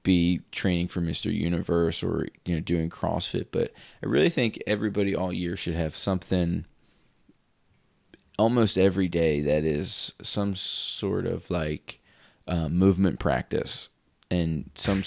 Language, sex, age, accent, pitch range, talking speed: English, male, 30-49, American, 85-100 Hz, 135 wpm